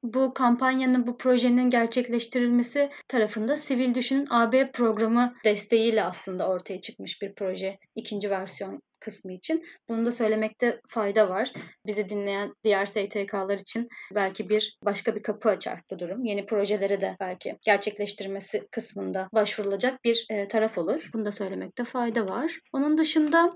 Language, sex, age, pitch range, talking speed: Turkish, female, 30-49, 215-265 Hz, 140 wpm